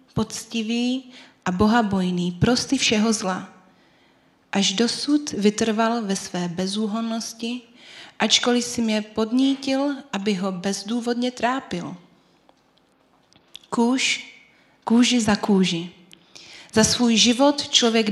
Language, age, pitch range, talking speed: Czech, 30-49, 185-235 Hz, 95 wpm